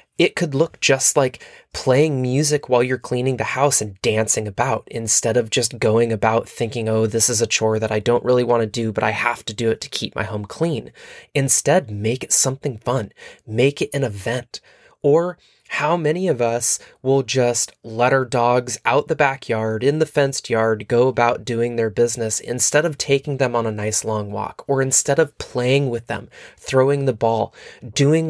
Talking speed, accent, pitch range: 200 wpm, American, 110-140 Hz